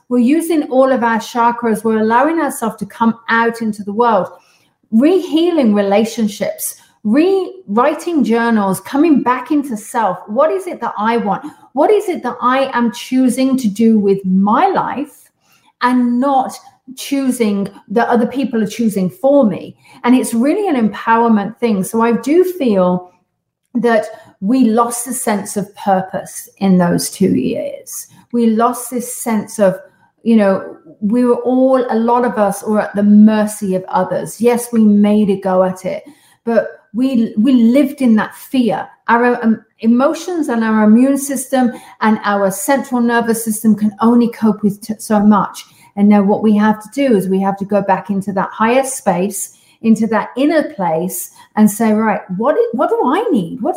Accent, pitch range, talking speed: British, 210-270 Hz, 170 wpm